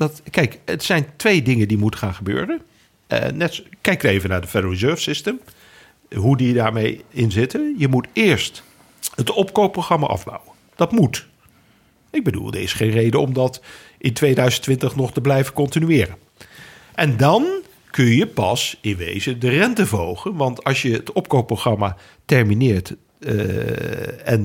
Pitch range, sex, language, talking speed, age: 105-145 Hz, male, Dutch, 150 wpm, 50-69